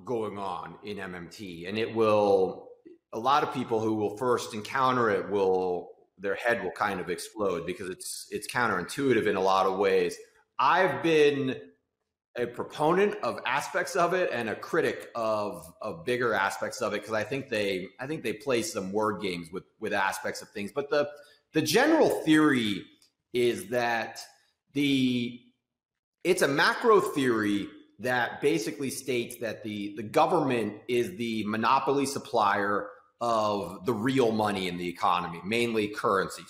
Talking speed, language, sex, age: 160 wpm, English, male, 30-49